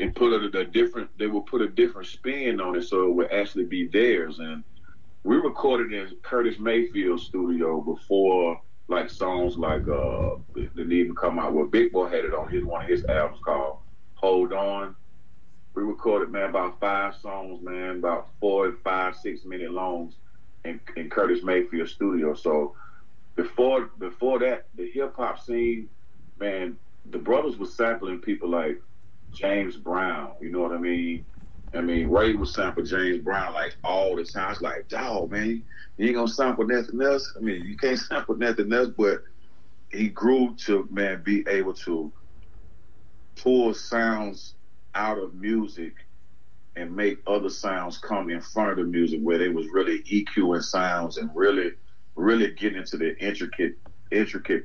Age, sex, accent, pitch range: 30-49, male, American, 90-120 Hz